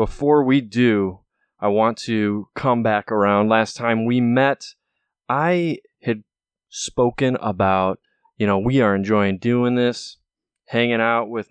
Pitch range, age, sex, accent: 100-125 Hz, 20-39, male, American